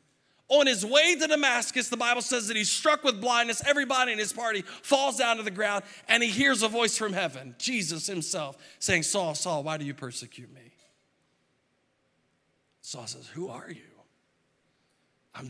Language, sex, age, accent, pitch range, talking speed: English, male, 40-59, American, 160-260 Hz, 175 wpm